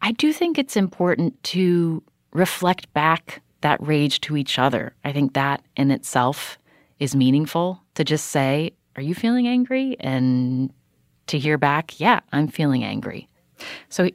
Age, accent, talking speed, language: 30-49, American, 155 wpm, English